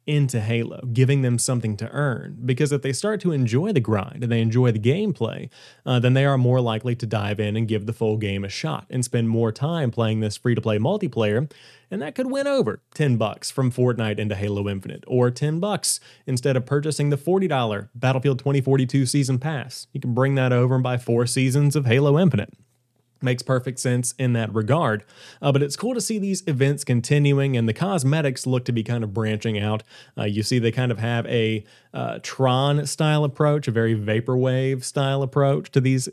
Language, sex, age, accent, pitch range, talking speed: English, male, 30-49, American, 115-140 Hz, 205 wpm